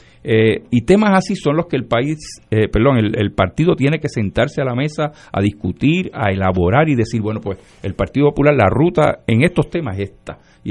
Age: 50-69